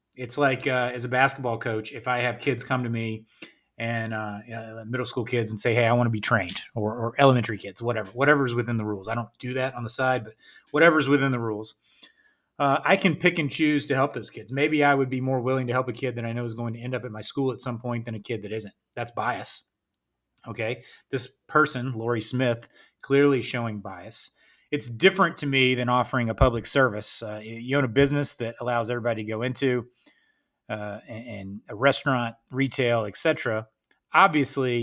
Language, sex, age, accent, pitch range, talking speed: English, male, 30-49, American, 110-130 Hz, 215 wpm